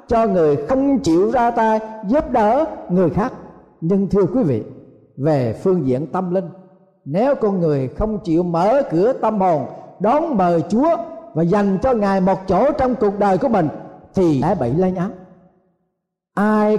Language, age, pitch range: Thai, 50-69, 165-245 Hz